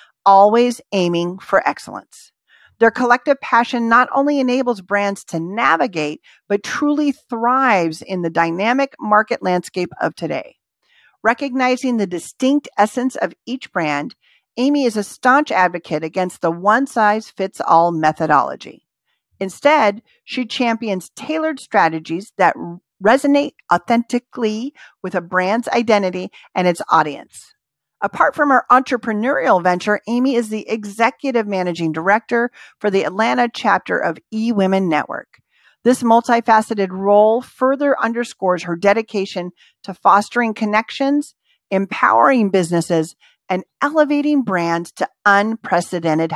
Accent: American